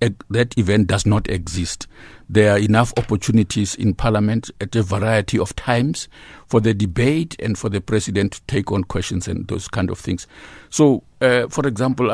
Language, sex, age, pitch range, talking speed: English, male, 60-79, 100-125 Hz, 180 wpm